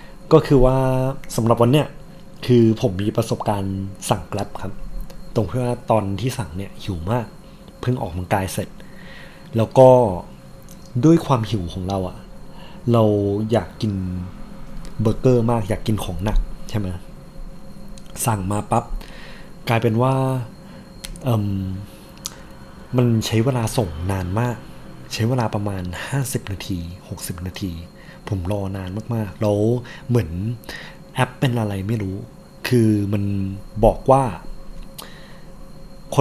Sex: male